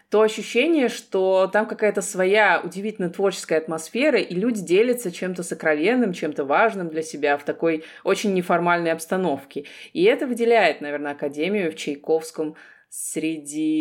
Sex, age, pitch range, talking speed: female, 20-39, 155-200 Hz, 135 wpm